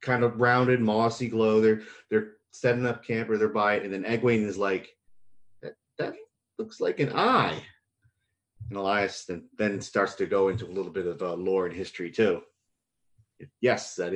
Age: 30-49